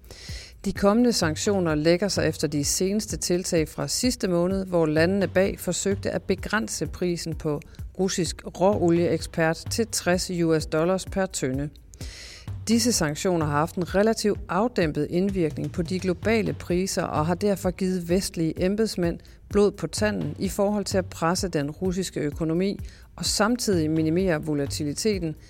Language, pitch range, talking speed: Danish, 155-200 Hz, 145 wpm